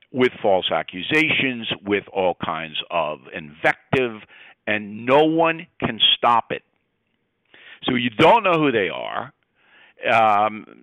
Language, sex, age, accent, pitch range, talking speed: English, male, 50-69, American, 115-150 Hz, 120 wpm